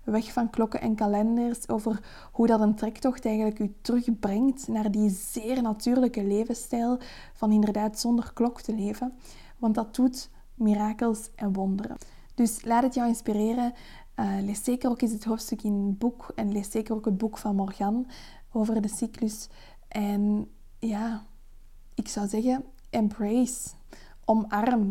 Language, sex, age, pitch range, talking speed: Dutch, female, 20-39, 210-240 Hz, 150 wpm